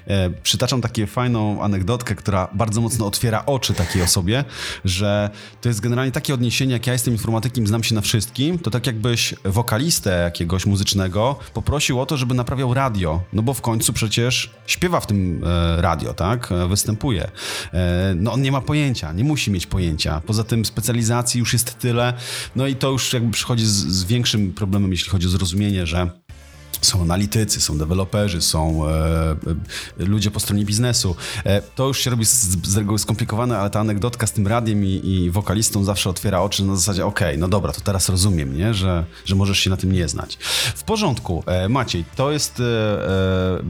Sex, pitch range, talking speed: male, 95-120 Hz, 185 wpm